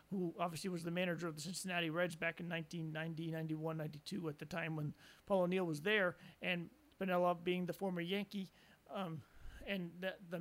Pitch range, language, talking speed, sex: 170-205 Hz, English, 185 wpm, male